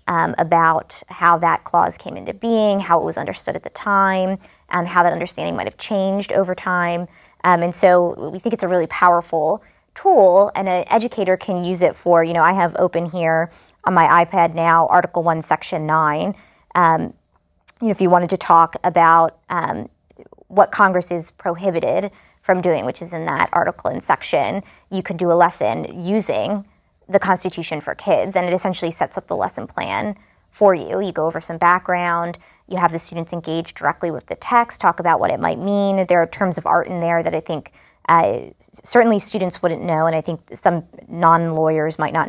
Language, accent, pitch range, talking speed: English, American, 165-190 Hz, 195 wpm